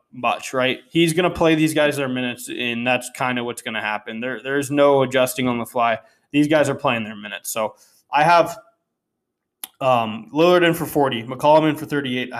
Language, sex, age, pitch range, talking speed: English, male, 20-39, 125-155 Hz, 215 wpm